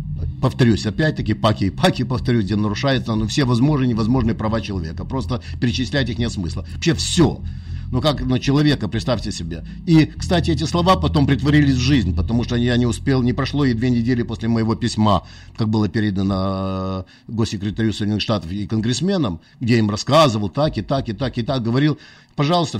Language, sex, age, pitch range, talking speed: Russian, male, 50-69, 95-130 Hz, 180 wpm